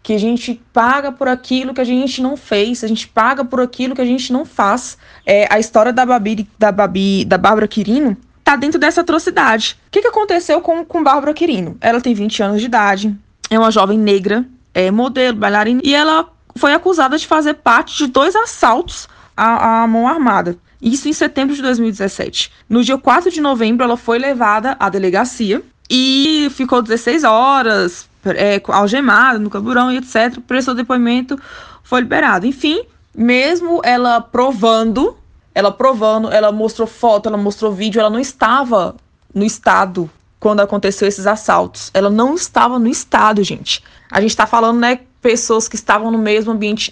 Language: Portuguese